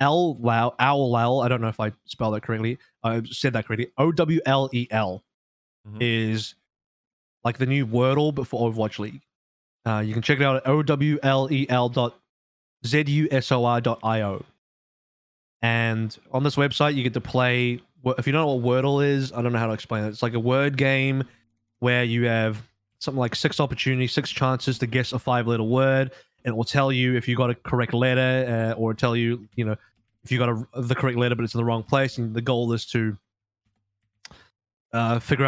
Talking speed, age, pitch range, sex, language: 190 wpm, 20-39, 115-135 Hz, male, English